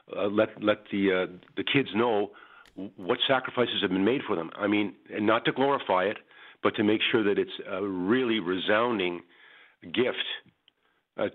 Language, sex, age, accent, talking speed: English, male, 50-69, American, 175 wpm